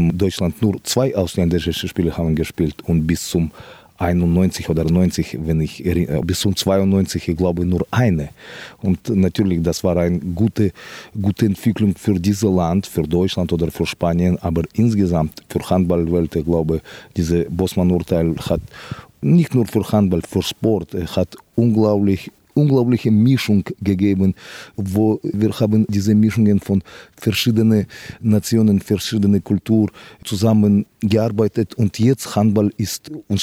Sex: male